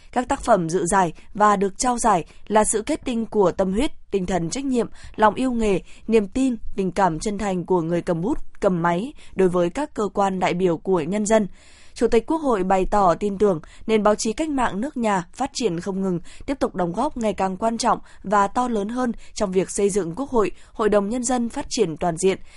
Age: 20-39